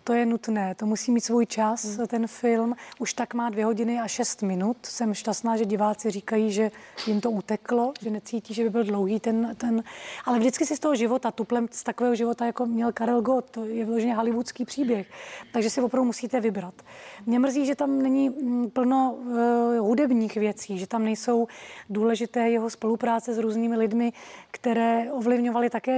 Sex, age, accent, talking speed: female, 30-49, native, 185 wpm